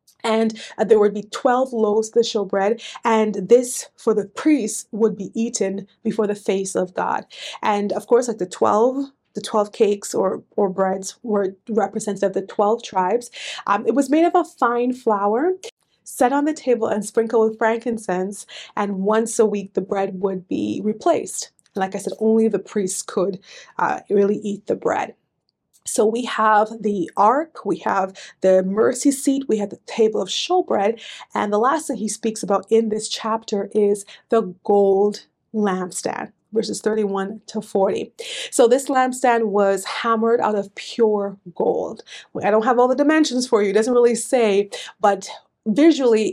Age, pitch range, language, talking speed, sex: 30-49, 205-240 Hz, English, 175 wpm, female